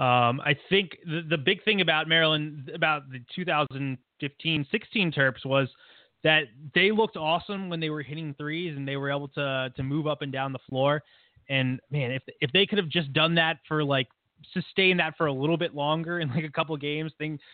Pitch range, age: 120-155 Hz, 20-39